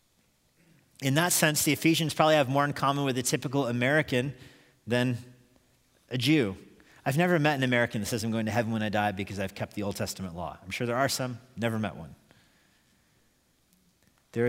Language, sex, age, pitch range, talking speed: English, male, 40-59, 110-135 Hz, 195 wpm